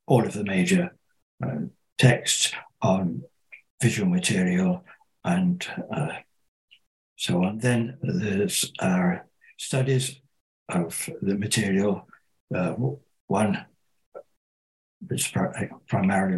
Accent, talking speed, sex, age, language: British, 90 wpm, male, 60-79, English